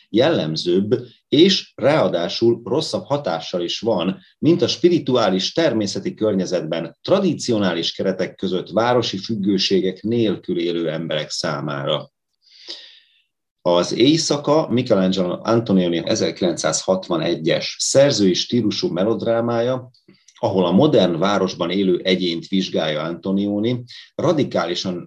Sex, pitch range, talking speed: male, 90-120 Hz, 90 wpm